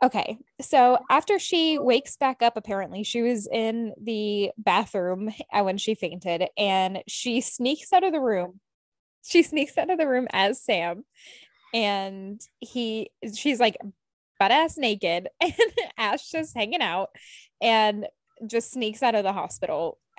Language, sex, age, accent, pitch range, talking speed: English, female, 10-29, American, 200-255 Hz, 150 wpm